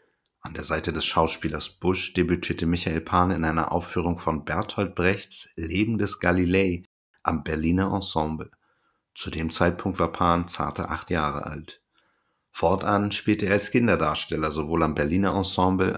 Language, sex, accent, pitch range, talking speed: German, male, German, 80-100 Hz, 145 wpm